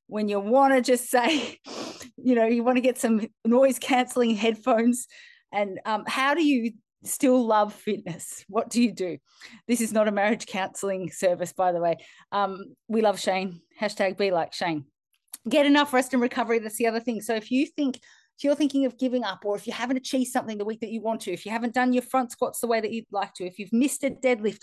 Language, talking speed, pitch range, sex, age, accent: English, 230 wpm, 205-255 Hz, female, 30-49, Australian